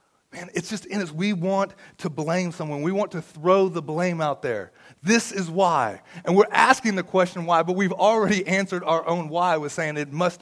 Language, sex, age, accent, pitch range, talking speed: English, male, 30-49, American, 170-200 Hz, 220 wpm